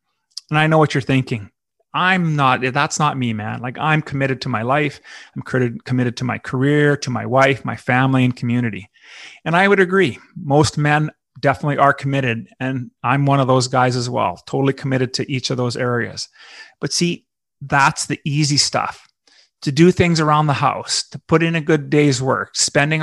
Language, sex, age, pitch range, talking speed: English, male, 30-49, 125-150 Hz, 195 wpm